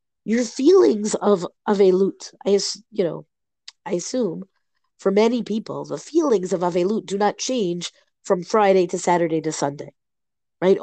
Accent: American